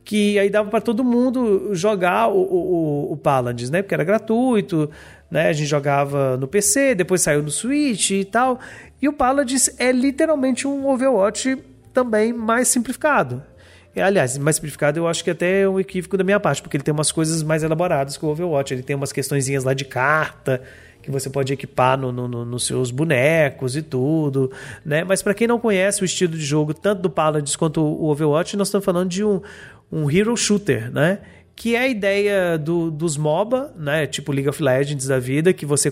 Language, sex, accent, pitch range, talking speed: Portuguese, male, Brazilian, 140-205 Hz, 200 wpm